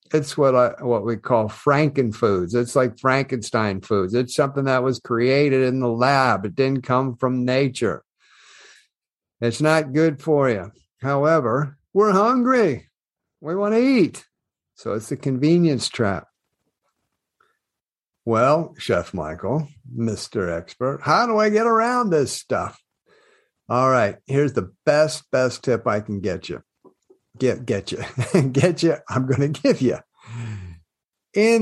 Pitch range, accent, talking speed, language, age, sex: 120-145 Hz, American, 140 wpm, English, 50-69, male